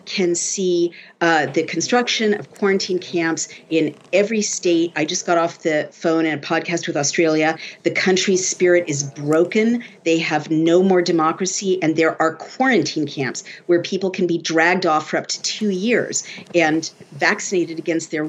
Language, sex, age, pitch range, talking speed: English, female, 50-69, 160-195 Hz, 170 wpm